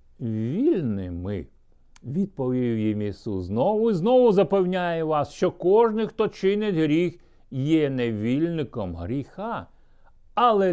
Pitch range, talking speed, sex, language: 115-185 Hz, 100 wpm, male, Ukrainian